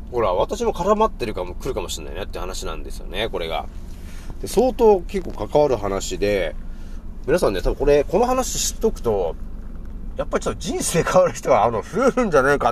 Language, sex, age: Japanese, male, 30-49